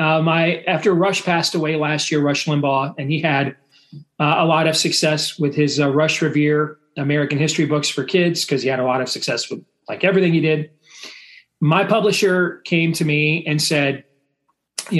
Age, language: 30-49, English